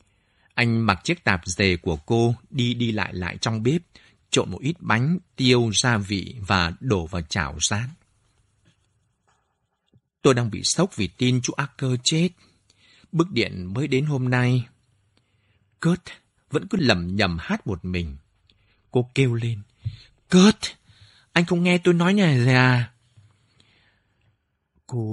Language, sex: Vietnamese, male